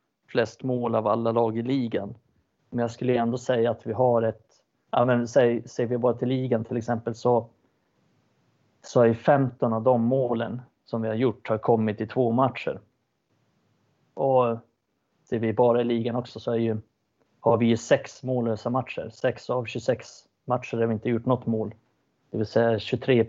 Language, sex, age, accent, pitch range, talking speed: Swedish, male, 30-49, native, 115-130 Hz, 185 wpm